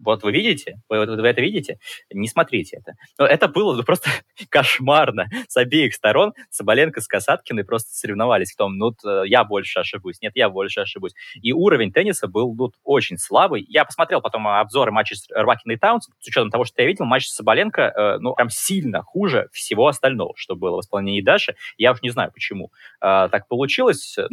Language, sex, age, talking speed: Russian, male, 20-39, 195 wpm